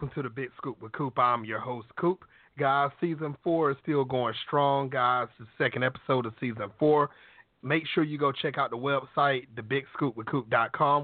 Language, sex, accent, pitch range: English, male, American, 130-165 Hz